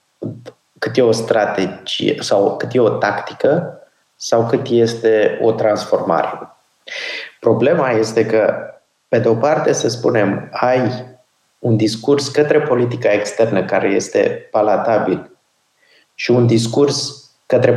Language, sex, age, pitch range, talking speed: Romanian, male, 30-49, 110-145 Hz, 120 wpm